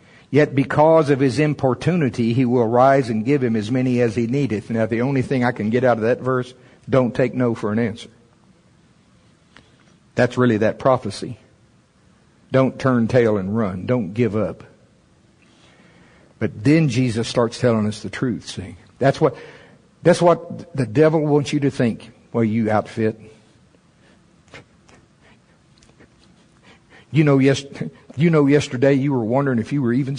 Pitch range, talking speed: 115-150 Hz, 160 wpm